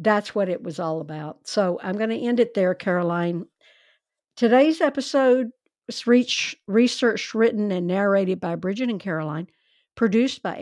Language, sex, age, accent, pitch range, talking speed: English, female, 60-79, American, 175-225 Hz, 155 wpm